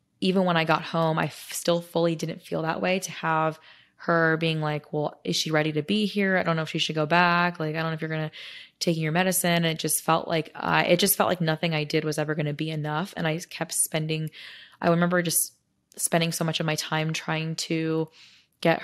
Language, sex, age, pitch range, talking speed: English, female, 20-39, 160-175 Hz, 255 wpm